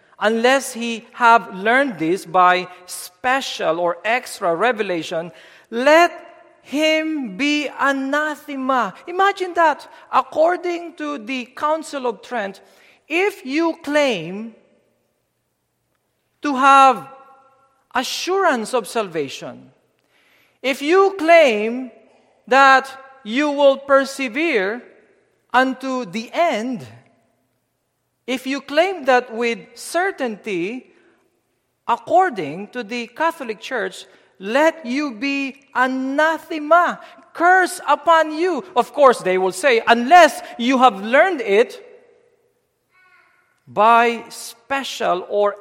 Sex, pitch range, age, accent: male, 235-320 Hz, 50-69, Filipino